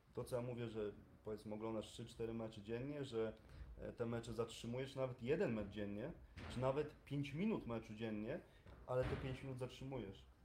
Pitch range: 115-130 Hz